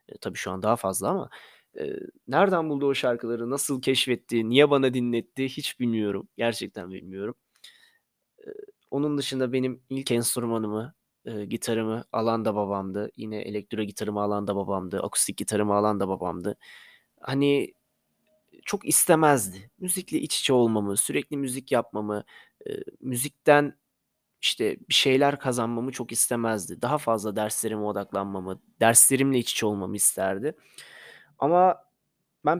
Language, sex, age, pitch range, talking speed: Turkish, male, 30-49, 110-160 Hz, 130 wpm